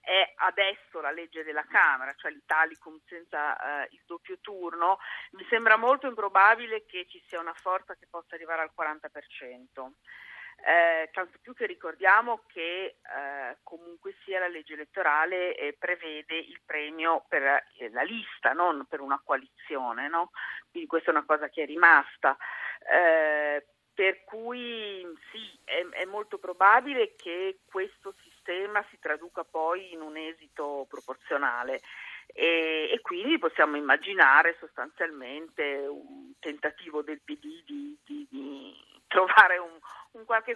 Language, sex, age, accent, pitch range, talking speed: Italian, female, 50-69, native, 155-205 Hz, 140 wpm